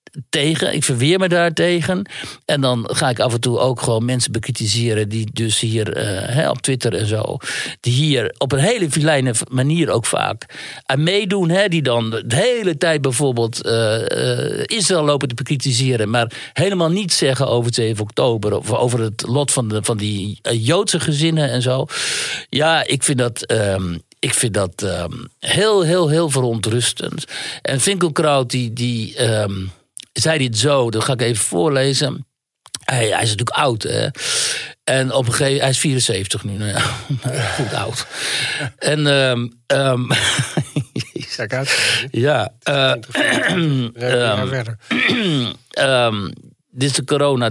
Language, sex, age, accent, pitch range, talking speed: Dutch, male, 60-79, Dutch, 115-150 Hz, 165 wpm